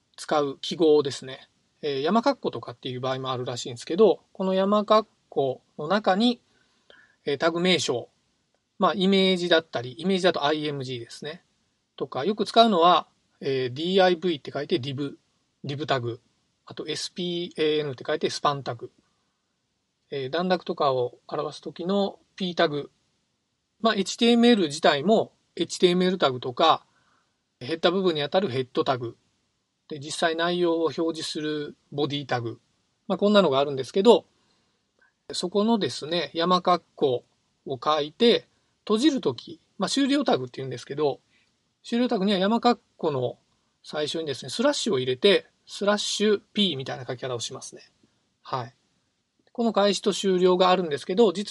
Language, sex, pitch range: Japanese, male, 140-205 Hz